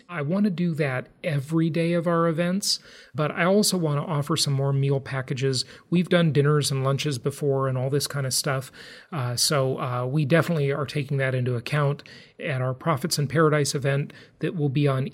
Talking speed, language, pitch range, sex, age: 205 wpm, English, 135-175 Hz, male, 40-59